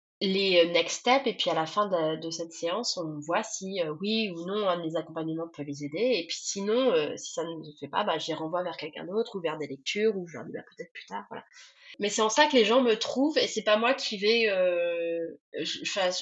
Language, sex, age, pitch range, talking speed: French, female, 20-39, 180-235 Hz, 255 wpm